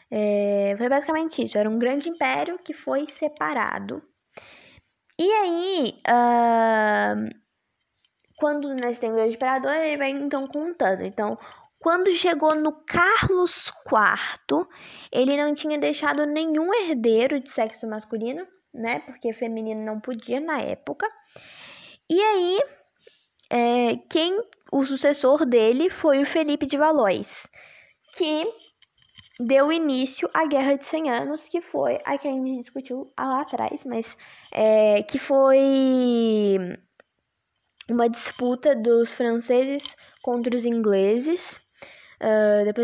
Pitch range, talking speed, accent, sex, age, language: 235-310 Hz, 120 wpm, Brazilian, female, 10-29, Portuguese